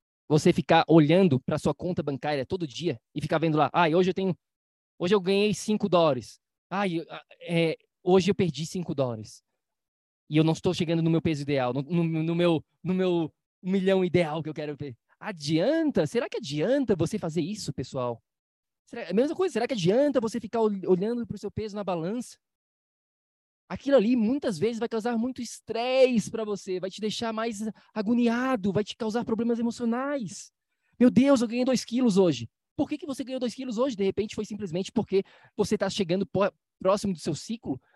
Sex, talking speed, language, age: male, 195 wpm, Portuguese, 20-39